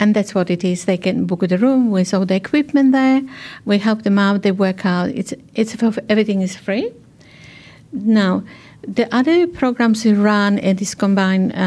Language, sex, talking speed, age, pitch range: Telugu, female, 205 wpm, 50-69, 190-225 Hz